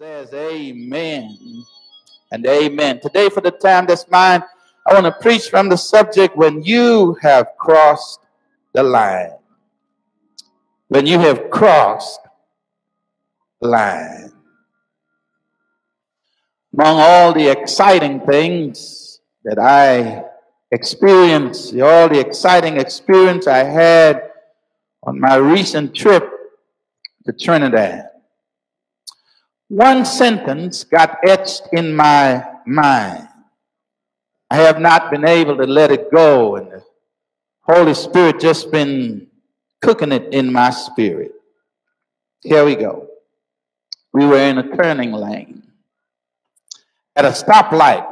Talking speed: 110 wpm